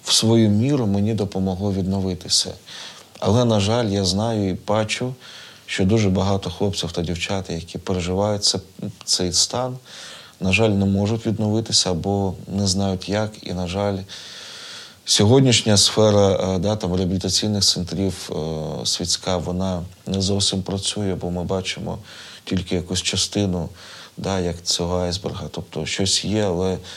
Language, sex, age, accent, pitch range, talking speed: Ukrainian, male, 20-39, native, 90-105 Hz, 135 wpm